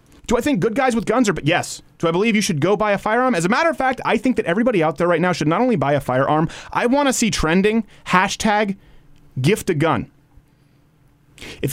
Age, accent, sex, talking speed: 30-49, American, male, 250 wpm